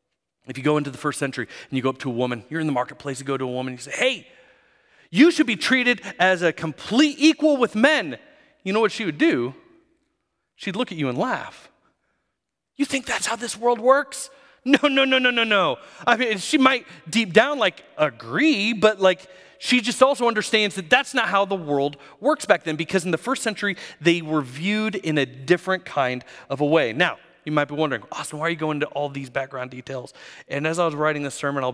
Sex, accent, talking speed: male, American, 235 wpm